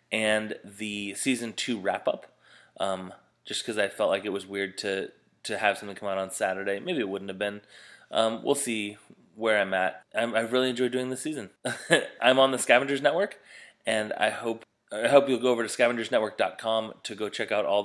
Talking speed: 205 wpm